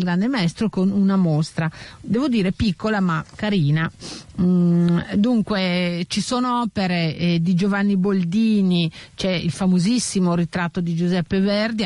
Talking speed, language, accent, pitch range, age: 130 wpm, Italian, native, 170-215 Hz, 50-69